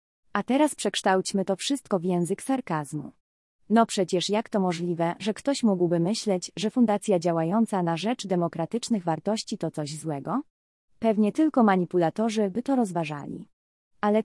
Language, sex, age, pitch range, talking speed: Polish, female, 20-39, 170-230 Hz, 145 wpm